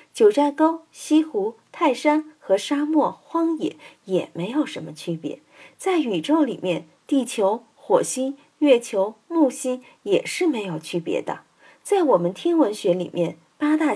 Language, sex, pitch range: Chinese, female, 180-305 Hz